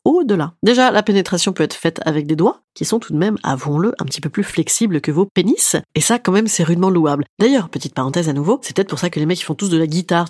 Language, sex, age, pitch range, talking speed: French, female, 30-49, 165-230 Hz, 280 wpm